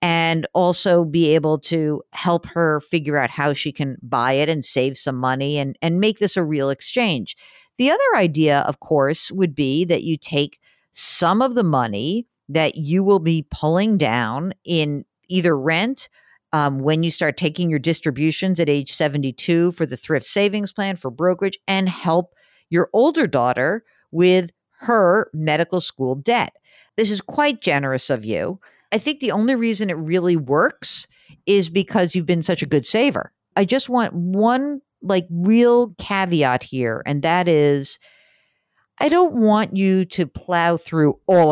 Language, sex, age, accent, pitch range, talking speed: English, female, 50-69, American, 150-195 Hz, 170 wpm